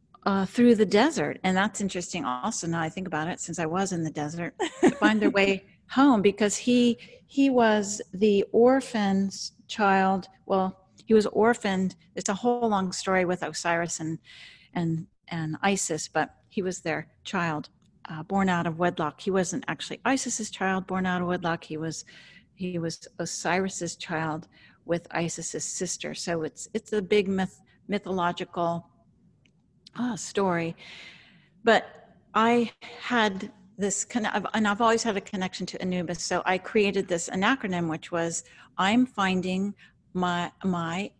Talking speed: 155 wpm